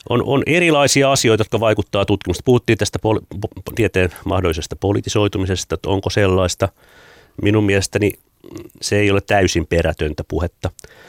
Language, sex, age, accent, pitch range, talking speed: Finnish, male, 30-49, native, 80-105 Hz, 135 wpm